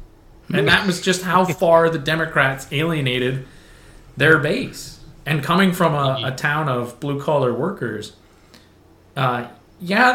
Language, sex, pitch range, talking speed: English, male, 120-155 Hz, 130 wpm